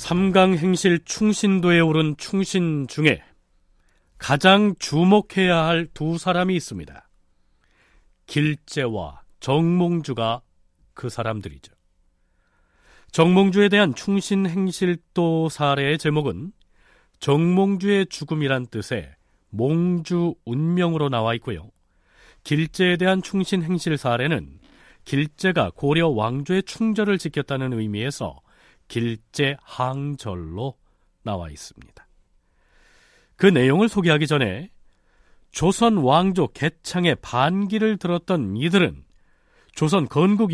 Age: 40-59